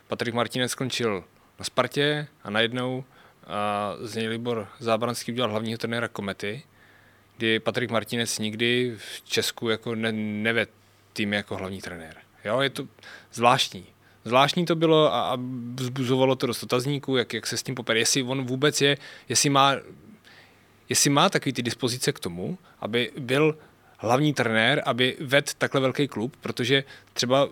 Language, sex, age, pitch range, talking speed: Czech, male, 20-39, 115-135 Hz, 150 wpm